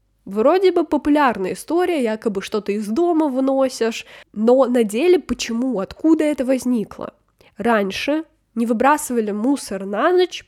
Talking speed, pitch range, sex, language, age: 125 wpm, 215-270 Hz, female, Russian, 10-29